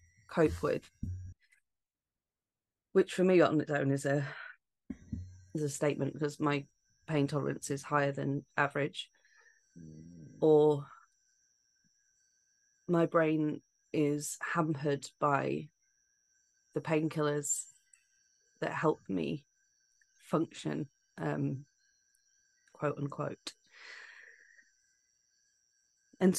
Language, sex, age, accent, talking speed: English, female, 30-49, British, 85 wpm